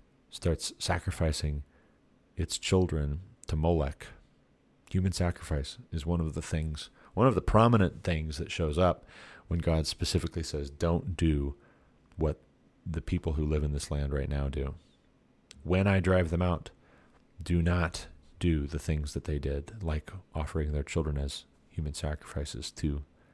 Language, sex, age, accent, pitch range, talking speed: English, male, 40-59, American, 75-90 Hz, 150 wpm